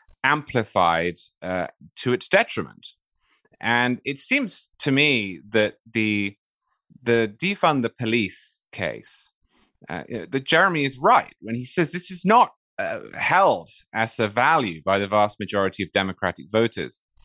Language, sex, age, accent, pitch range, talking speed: English, male, 30-49, British, 95-130 Hz, 140 wpm